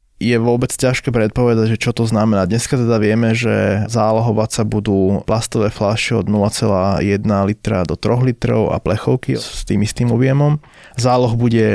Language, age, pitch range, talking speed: Slovak, 20-39, 100-115 Hz, 160 wpm